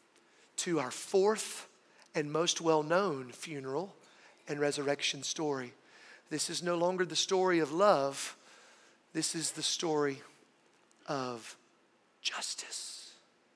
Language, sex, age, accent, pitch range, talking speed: English, male, 40-59, American, 155-210 Hz, 105 wpm